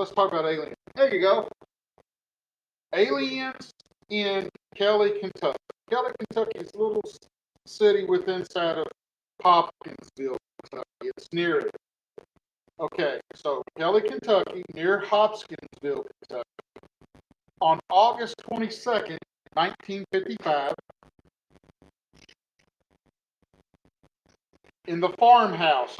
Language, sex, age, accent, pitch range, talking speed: English, male, 50-69, American, 170-265 Hz, 90 wpm